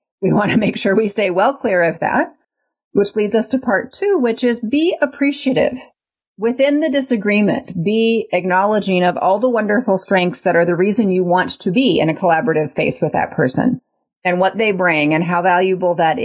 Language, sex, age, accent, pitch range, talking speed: English, female, 30-49, American, 180-255 Hz, 200 wpm